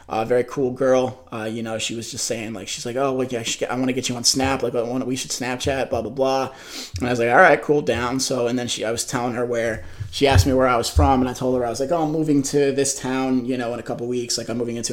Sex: male